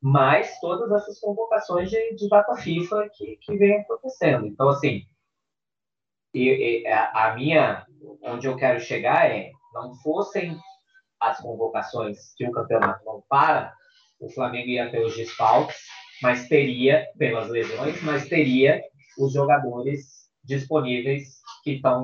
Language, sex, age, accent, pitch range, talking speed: Portuguese, male, 20-39, Brazilian, 120-155 Hz, 125 wpm